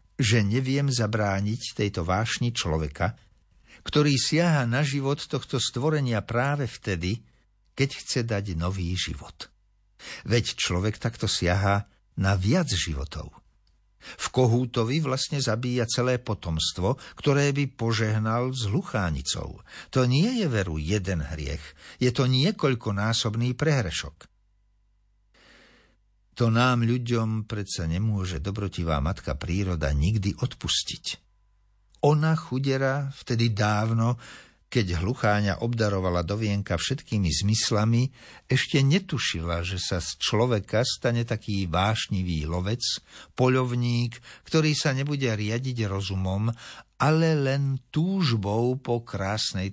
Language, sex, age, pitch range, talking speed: Slovak, male, 60-79, 90-125 Hz, 105 wpm